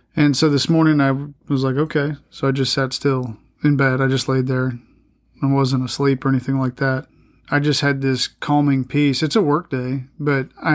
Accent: American